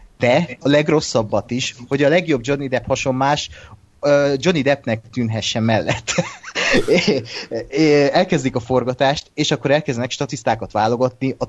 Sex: male